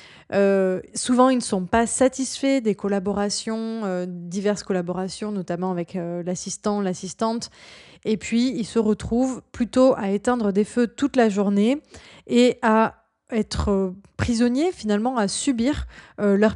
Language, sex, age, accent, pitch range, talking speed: French, female, 20-39, French, 195-235 Hz, 145 wpm